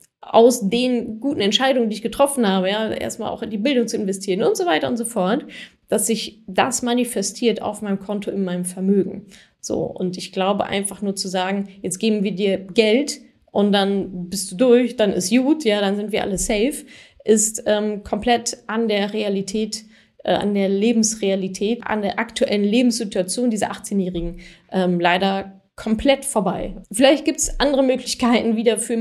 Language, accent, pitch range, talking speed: German, German, 185-230 Hz, 180 wpm